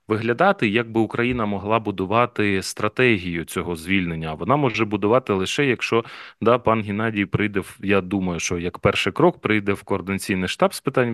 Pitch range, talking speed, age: 95-120 Hz, 165 wpm, 30-49